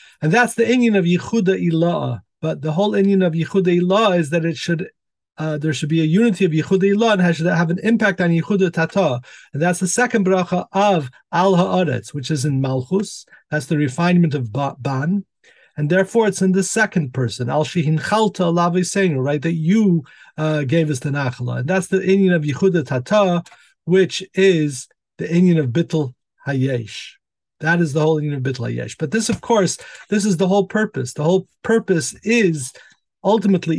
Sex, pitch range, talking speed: male, 145-190 Hz, 190 wpm